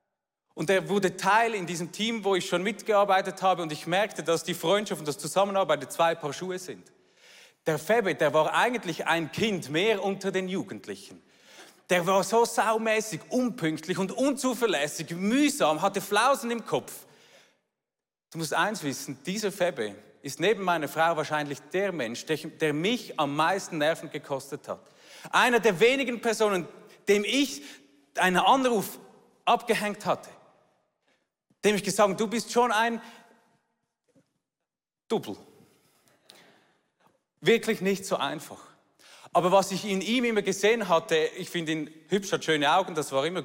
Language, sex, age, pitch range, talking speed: German, male, 40-59, 160-210 Hz, 150 wpm